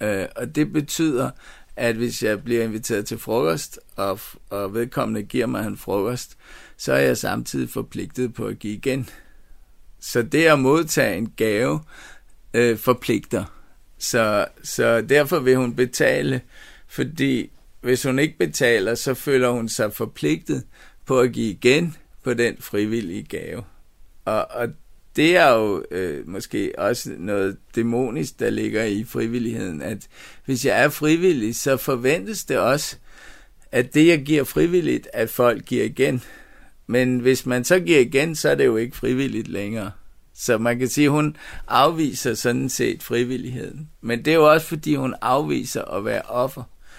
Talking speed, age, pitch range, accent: 155 wpm, 50-69, 115-145 Hz, native